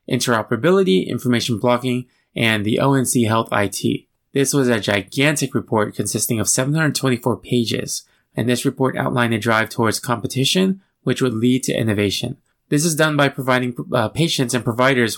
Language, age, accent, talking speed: English, 20-39, American, 155 wpm